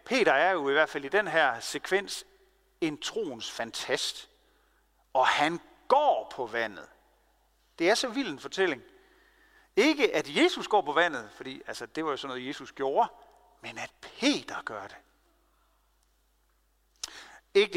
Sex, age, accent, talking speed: male, 40-59, native, 150 wpm